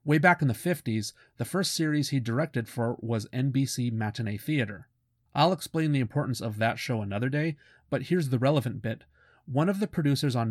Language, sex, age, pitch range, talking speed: English, male, 30-49, 115-145 Hz, 195 wpm